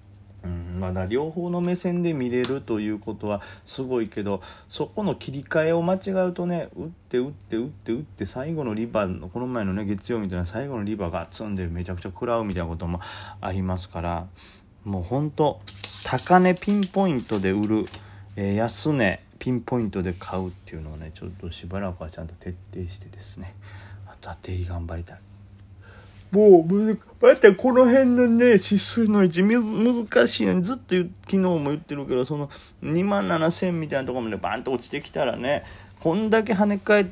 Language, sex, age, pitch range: Japanese, male, 30-49, 95-155 Hz